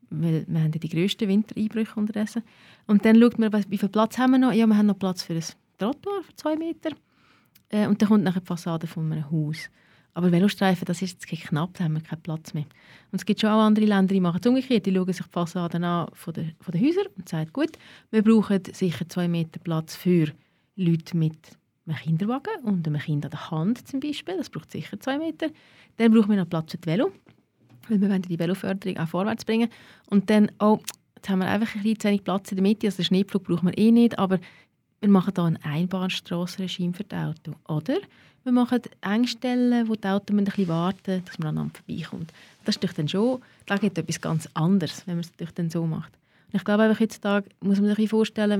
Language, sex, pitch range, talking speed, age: German, female, 175-215 Hz, 220 wpm, 30-49